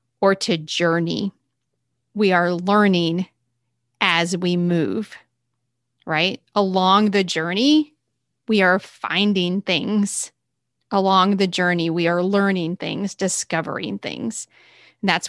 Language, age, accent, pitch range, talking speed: English, 30-49, American, 175-205 Hz, 105 wpm